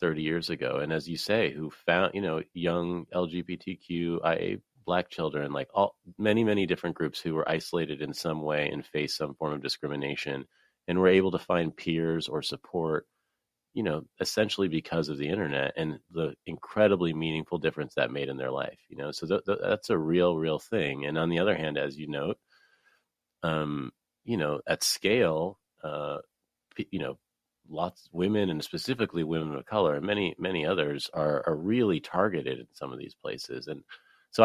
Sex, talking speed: male, 185 wpm